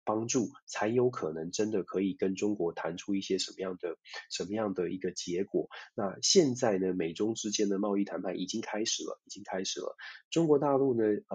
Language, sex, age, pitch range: Chinese, male, 20-39, 95-115 Hz